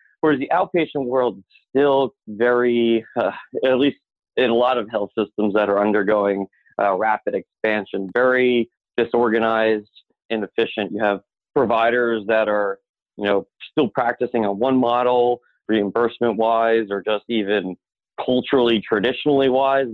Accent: American